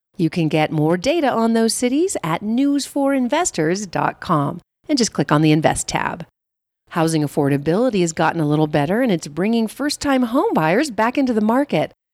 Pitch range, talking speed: 160-245 Hz, 165 wpm